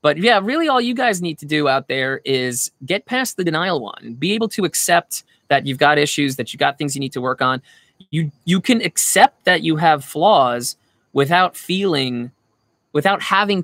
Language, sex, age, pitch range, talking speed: English, male, 20-39, 130-175 Hz, 200 wpm